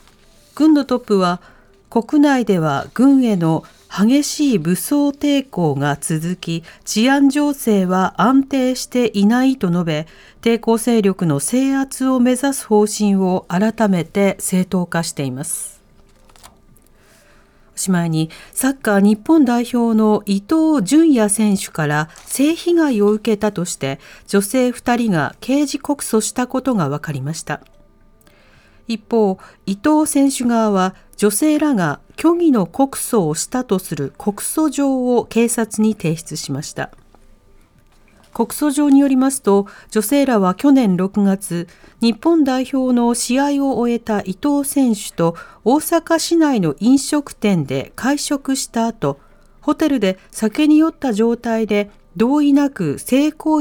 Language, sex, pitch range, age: Japanese, female, 185-270 Hz, 40-59